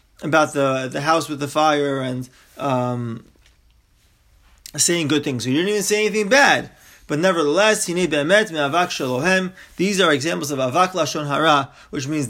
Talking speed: 150 wpm